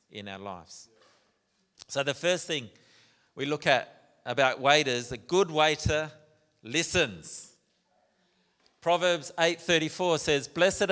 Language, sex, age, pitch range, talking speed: English, male, 40-59, 135-165 Hz, 110 wpm